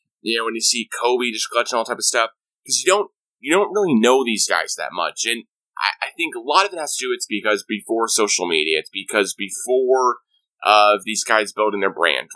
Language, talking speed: English, 235 wpm